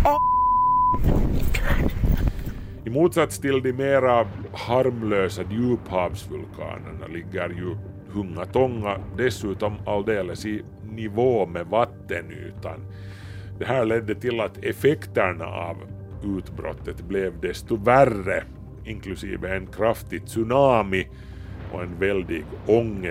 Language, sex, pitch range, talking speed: Swedish, male, 90-115 Hz, 90 wpm